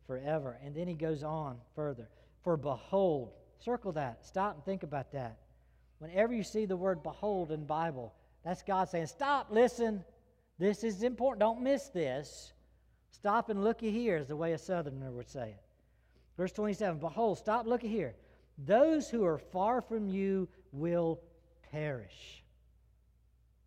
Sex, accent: male, American